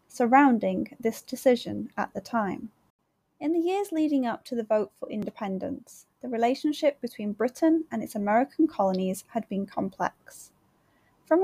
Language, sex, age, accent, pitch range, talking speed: English, female, 10-29, British, 210-280 Hz, 145 wpm